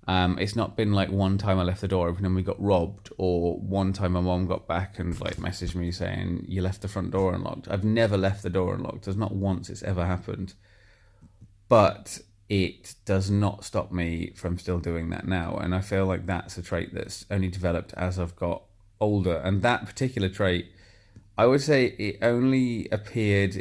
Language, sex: English, male